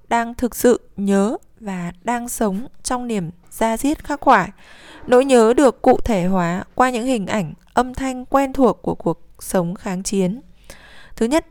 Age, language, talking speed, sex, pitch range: 20-39, Vietnamese, 175 wpm, female, 195-250 Hz